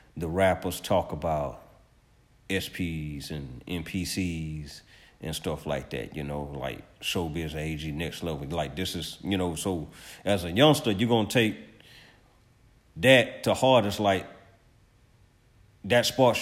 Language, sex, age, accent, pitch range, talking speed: English, male, 40-59, American, 85-115 Hz, 135 wpm